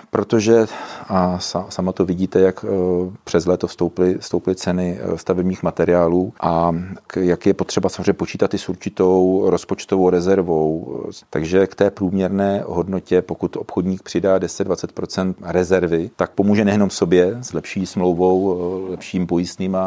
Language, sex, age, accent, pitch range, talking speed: Czech, male, 40-59, native, 90-100 Hz, 125 wpm